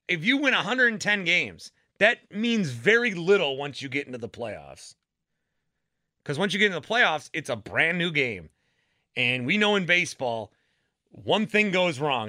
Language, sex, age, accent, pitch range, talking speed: English, male, 30-49, American, 120-165 Hz, 175 wpm